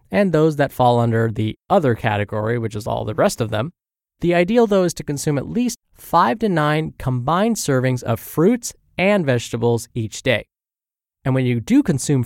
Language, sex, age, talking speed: English, male, 20-39, 190 wpm